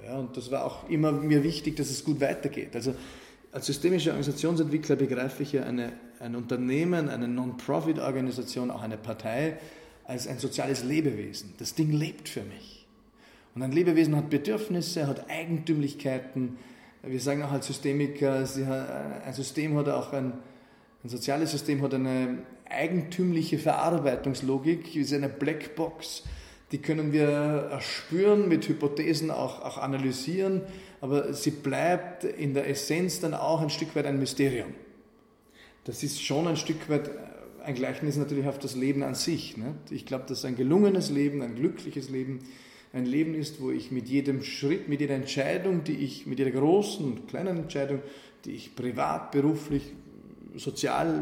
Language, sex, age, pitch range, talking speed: German, male, 30-49, 130-155 Hz, 155 wpm